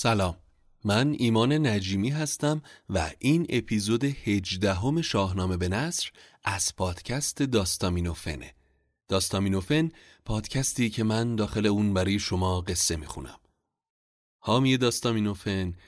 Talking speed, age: 100 wpm, 30-49